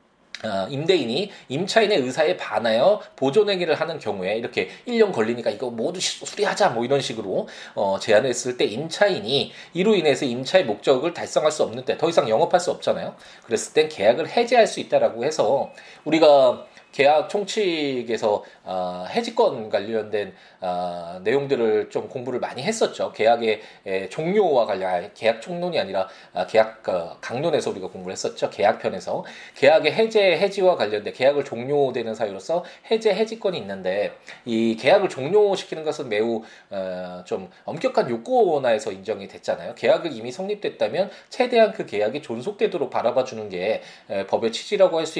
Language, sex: Korean, male